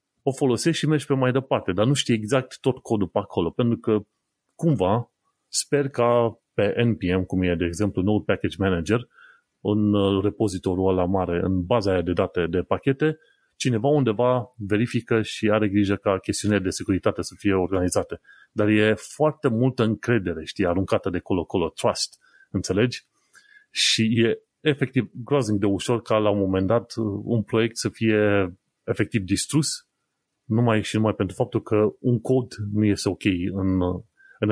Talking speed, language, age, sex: 165 wpm, Romanian, 30-49, male